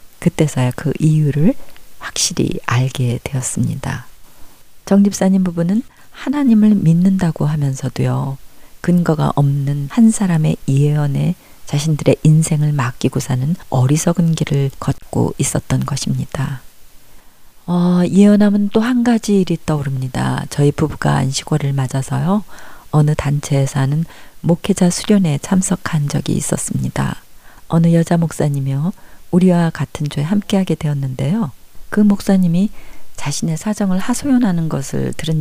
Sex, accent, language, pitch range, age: female, native, Korean, 135-175 Hz, 40-59